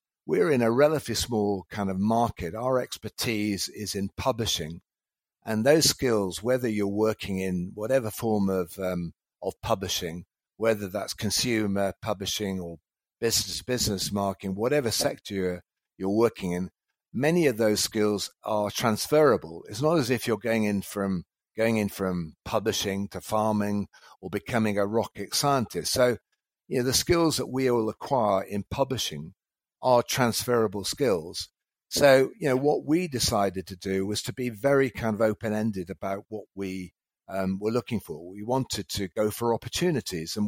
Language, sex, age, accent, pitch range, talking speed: English, male, 50-69, British, 100-120 Hz, 160 wpm